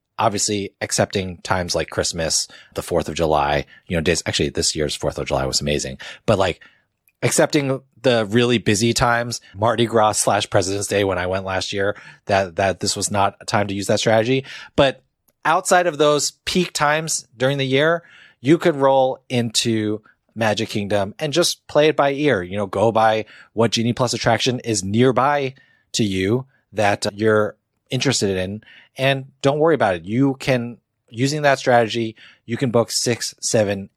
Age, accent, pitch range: 30-49, American, 105-135 Hz